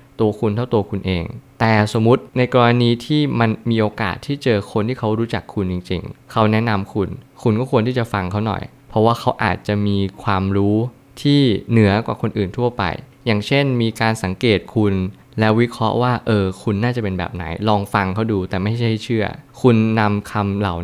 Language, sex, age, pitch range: Thai, male, 20-39, 100-125 Hz